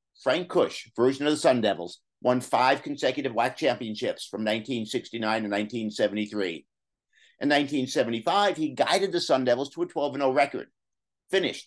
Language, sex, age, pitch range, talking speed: English, male, 50-69, 120-170 Hz, 145 wpm